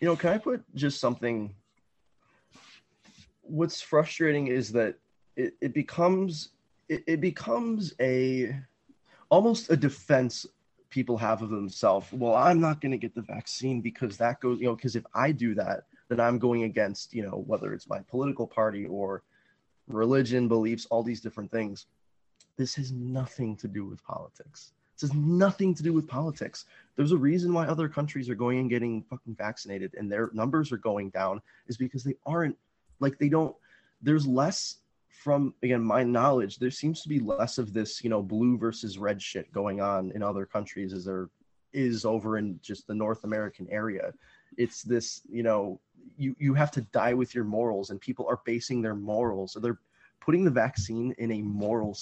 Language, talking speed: English, 180 wpm